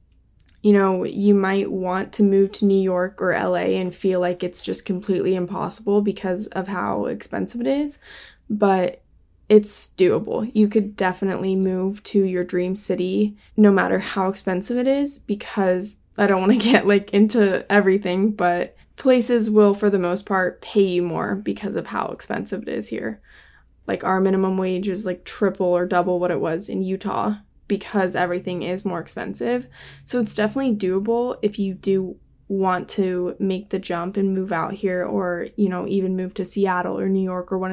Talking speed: 185 wpm